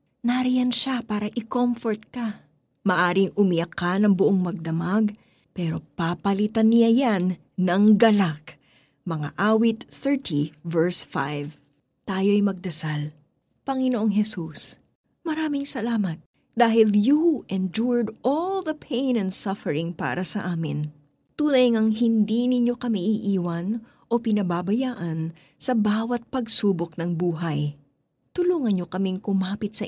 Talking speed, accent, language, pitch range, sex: 115 wpm, native, Filipino, 170-235 Hz, female